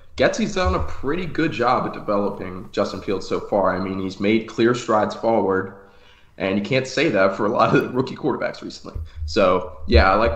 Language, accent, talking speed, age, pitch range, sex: English, American, 210 wpm, 20-39, 95-115 Hz, male